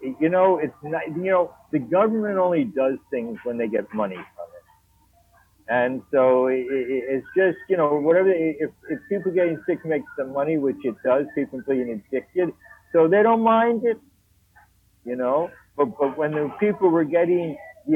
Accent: American